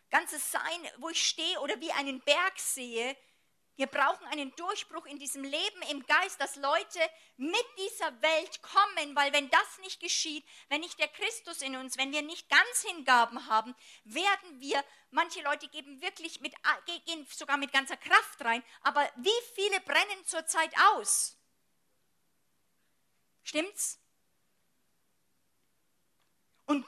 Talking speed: 140 wpm